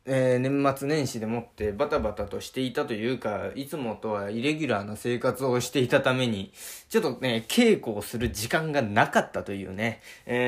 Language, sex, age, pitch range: Japanese, male, 20-39, 110-155 Hz